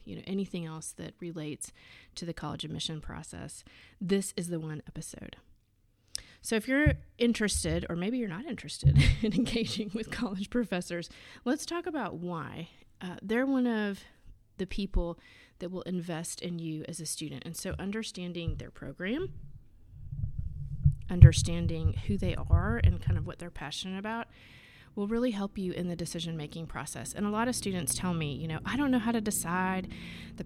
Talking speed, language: 175 wpm, English